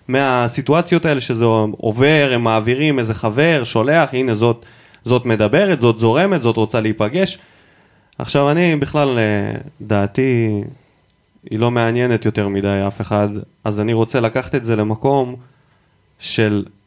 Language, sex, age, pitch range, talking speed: Hebrew, male, 20-39, 110-145 Hz, 130 wpm